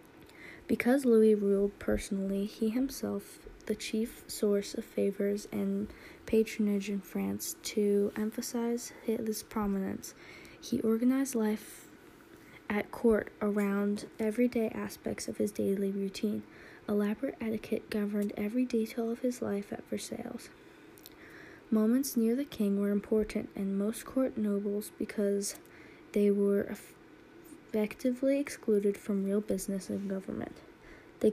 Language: English